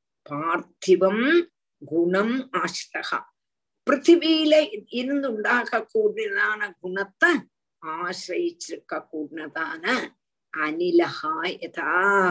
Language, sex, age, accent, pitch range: Tamil, female, 50-69, native, 195-315 Hz